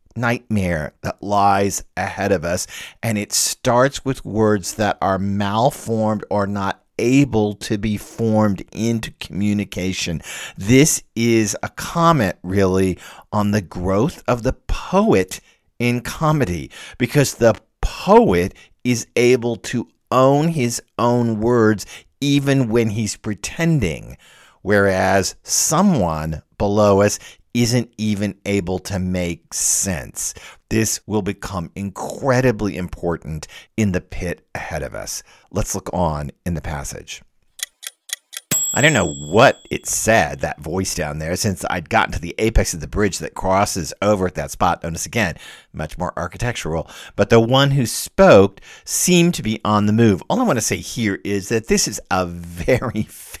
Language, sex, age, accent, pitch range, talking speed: English, male, 50-69, American, 90-120 Hz, 145 wpm